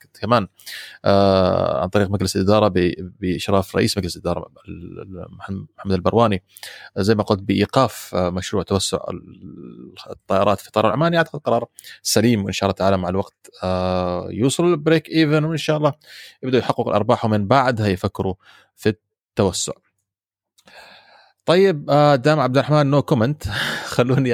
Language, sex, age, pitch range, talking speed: Arabic, male, 30-49, 95-145 Hz, 140 wpm